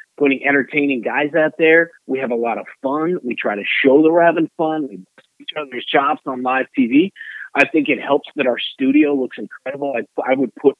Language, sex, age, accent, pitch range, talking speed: English, male, 40-59, American, 120-150 Hz, 220 wpm